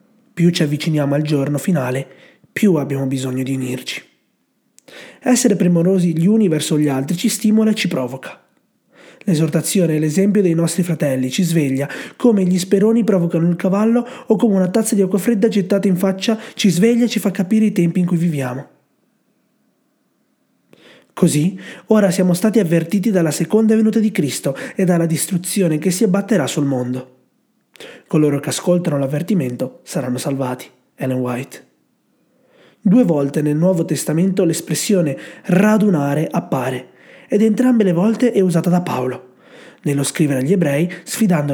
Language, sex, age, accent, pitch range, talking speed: Italian, male, 30-49, native, 145-200 Hz, 150 wpm